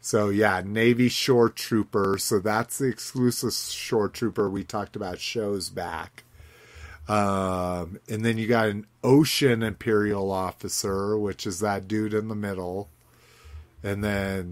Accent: American